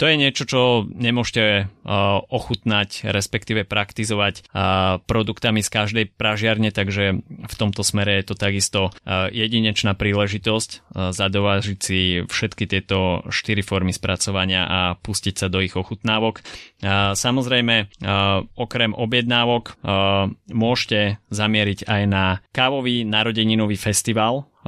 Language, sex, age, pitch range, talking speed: Slovak, male, 20-39, 95-110 Hz, 105 wpm